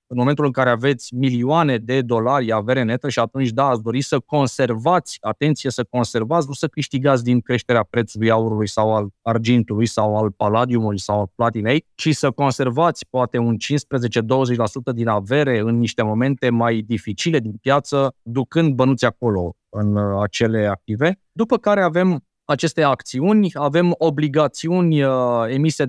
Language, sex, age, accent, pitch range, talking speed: Romanian, male, 20-39, native, 115-150 Hz, 150 wpm